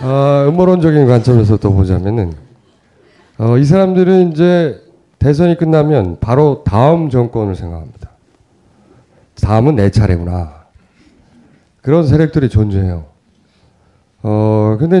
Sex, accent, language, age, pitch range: male, native, Korean, 30-49, 105-160 Hz